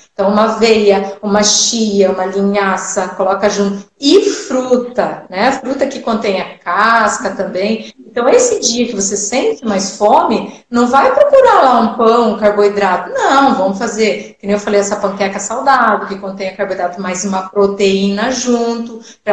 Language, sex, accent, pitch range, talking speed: Portuguese, female, Brazilian, 200-250 Hz, 165 wpm